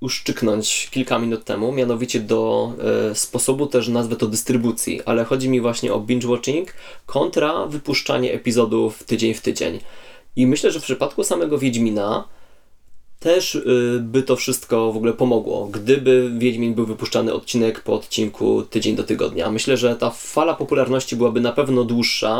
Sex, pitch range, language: male, 115-130 Hz, Polish